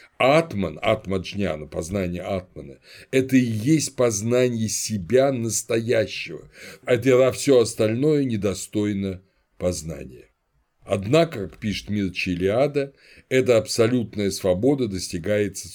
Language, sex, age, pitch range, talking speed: Russian, male, 60-79, 90-120 Hz, 100 wpm